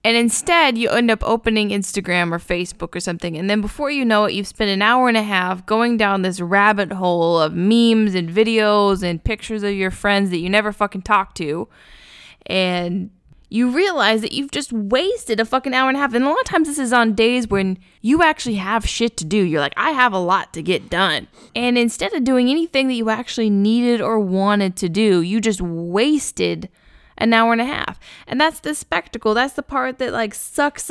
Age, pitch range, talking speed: 10-29, 200-255 Hz, 220 wpm